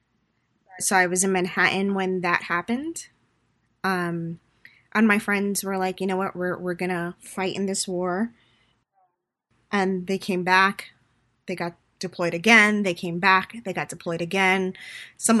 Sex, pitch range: female, 180-205 Hz